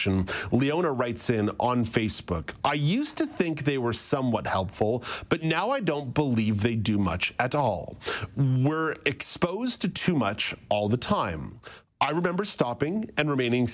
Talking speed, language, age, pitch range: 155 wpm, English, 40-59, 105-150 Hz